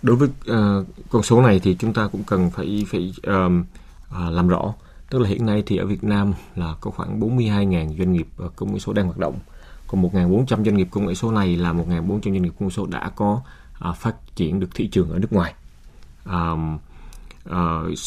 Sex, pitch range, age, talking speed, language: male, 85-105 Hz, 20-39, 220 wpm, Vietnamese